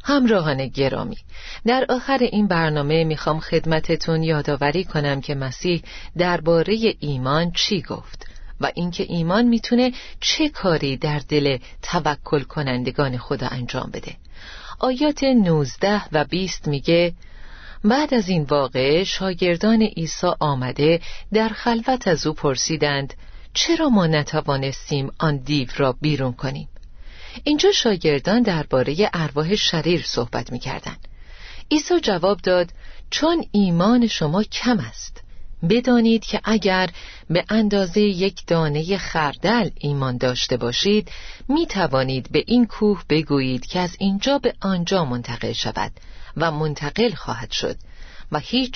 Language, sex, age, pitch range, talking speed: Persian, female, 40-59, 145-210 Hz, 120 wpm